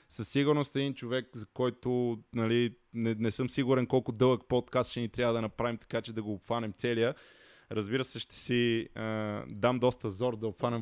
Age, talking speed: 20-39, 195 wpm